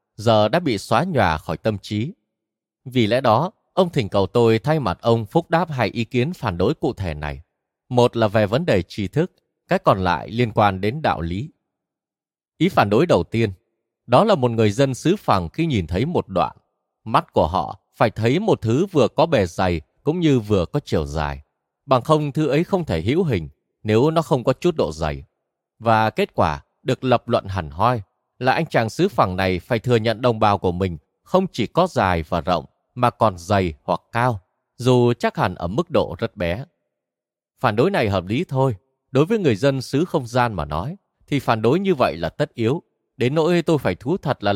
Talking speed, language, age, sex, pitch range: 220 wpm, Vietnamese, 20-39, male, 95-140 Hz